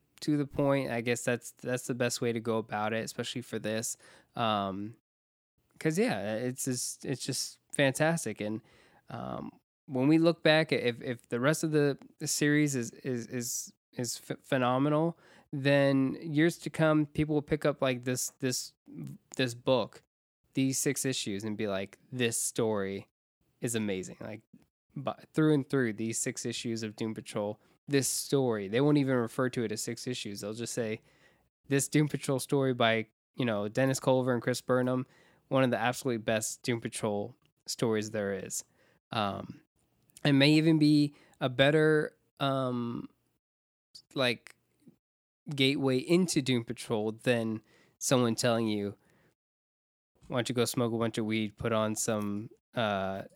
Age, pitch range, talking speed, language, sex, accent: 20-39, 115-145 Hz, 160 wpm, English, male, American